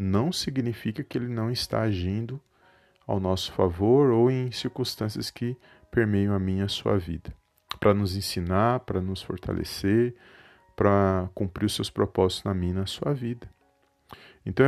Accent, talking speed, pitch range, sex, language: Brazilian, 155 wpm, 95-120 Hz, male, Portuguese